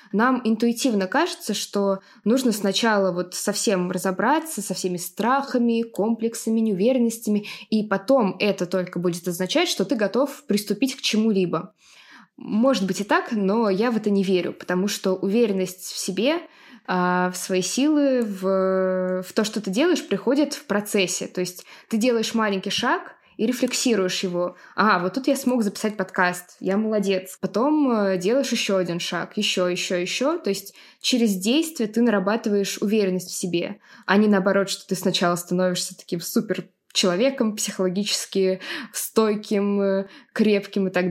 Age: 20-39